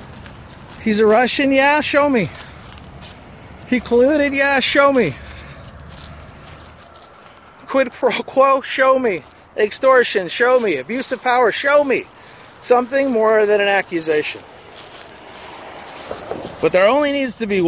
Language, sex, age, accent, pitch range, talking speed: English, male, 50-69, American, 155-220 Hz, 120 wpm